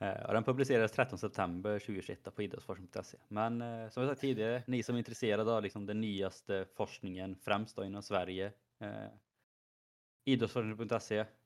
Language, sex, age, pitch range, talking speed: Swedish, male, 20-39, 105-120 Hz, 150 wpm